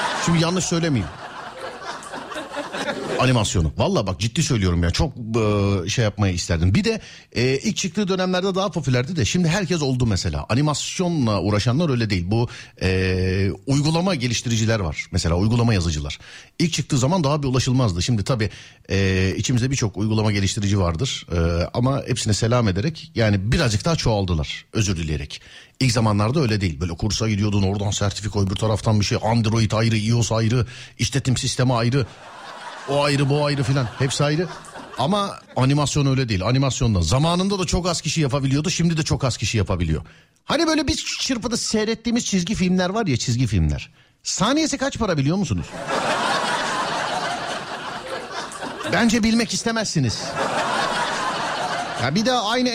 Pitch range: 105-170 Hz